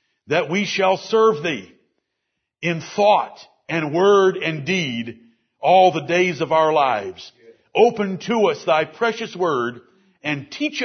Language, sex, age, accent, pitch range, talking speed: English, male, 60-79, American, 155-210 Hz, 140 wpm